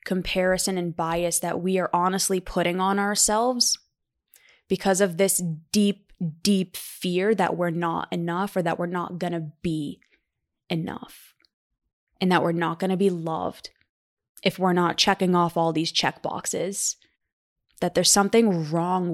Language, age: English, 20-39